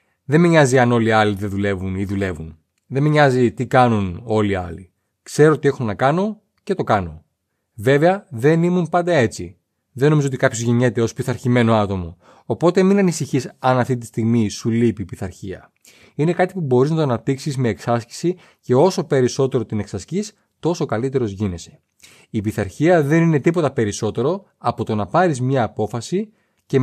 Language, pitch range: Greek, 115-155 Hz